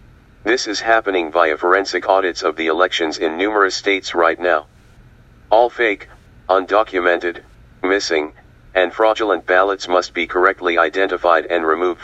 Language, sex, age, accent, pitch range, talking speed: English, male, 40-59, American, 85-105 Hz, 135 wpm